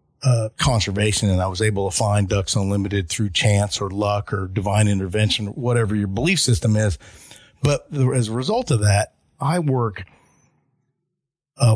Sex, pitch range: male, 100-125 Hz